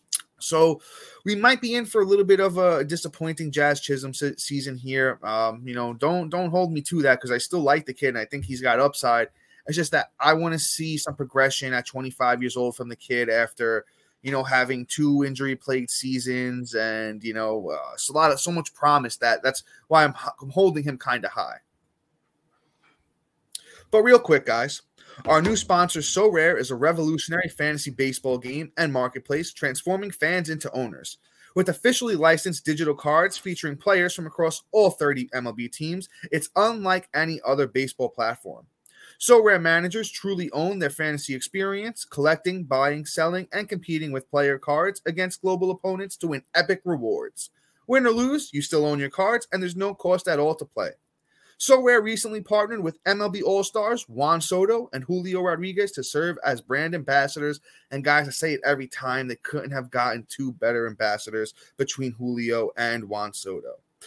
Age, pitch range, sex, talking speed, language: 20-39, 130-180 Hz, male, 185 wpm, English